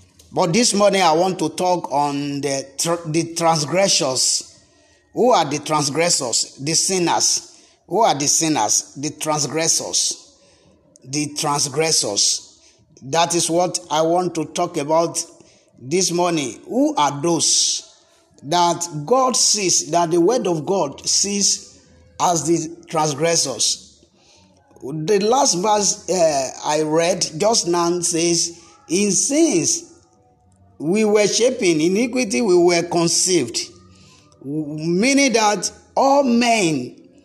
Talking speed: 115 wpm